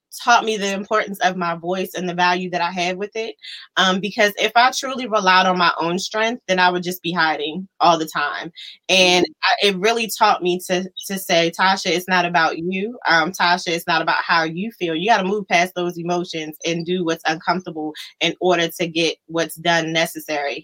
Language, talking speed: English, 210 wpm